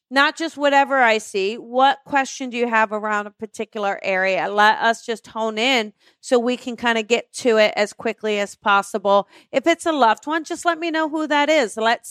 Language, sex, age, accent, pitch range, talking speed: English, female, 40-59, American, 220-300 Hz, 220 wpm